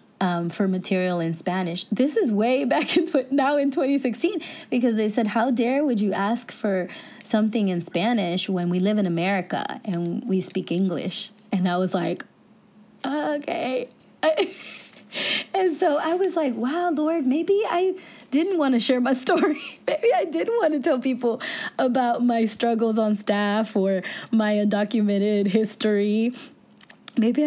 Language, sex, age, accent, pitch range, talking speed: English, female, 20-39, American, 185-265 Hz, 155 wpm